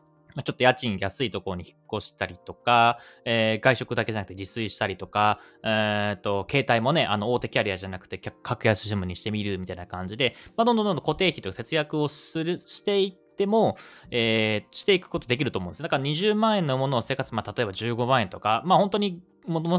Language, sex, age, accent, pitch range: Japanese, male, 30-49, native, 100-150 Hz